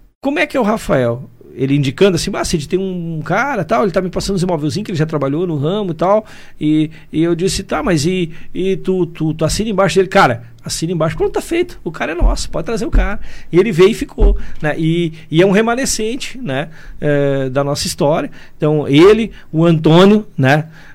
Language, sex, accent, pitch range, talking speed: Portuguese, male, Brazilian, 150-185 Hz, 225 wpm